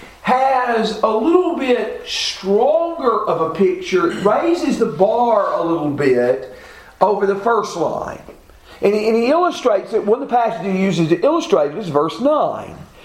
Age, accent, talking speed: 50-69, American, 170 wpm